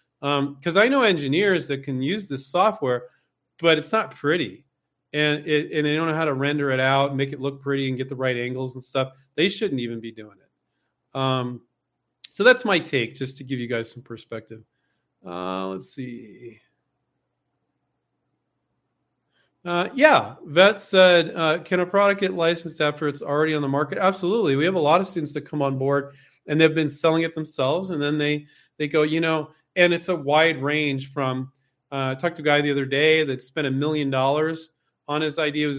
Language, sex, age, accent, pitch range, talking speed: English, male, 40-59, American, 135-165 Hz, 200 wpm